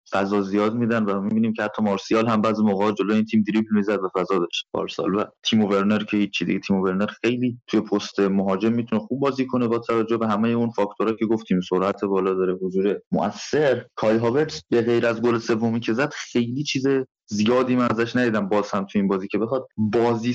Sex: male